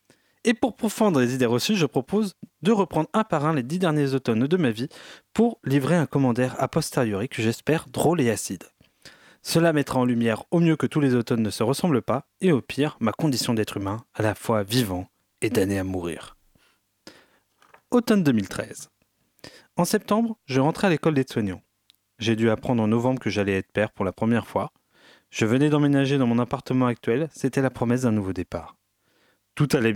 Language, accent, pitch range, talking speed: French, French, 110-155 Hz, 195 wpm